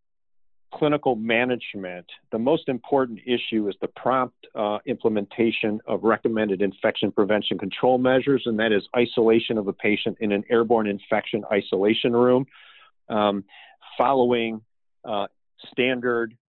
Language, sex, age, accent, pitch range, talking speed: English, male, 50-69, American, 100-115 Hz, 125 wpm